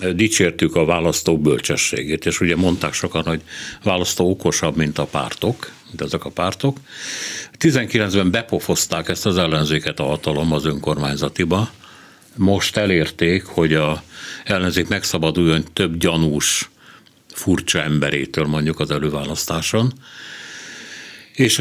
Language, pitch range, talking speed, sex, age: Hungarian, 80-115 Hz, 110 wpm, male, 60-79